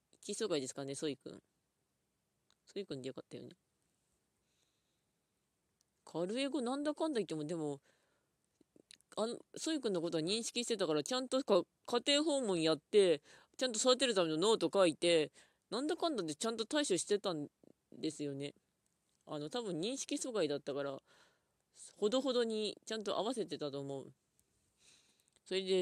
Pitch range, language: 150-230 Hz, Japanese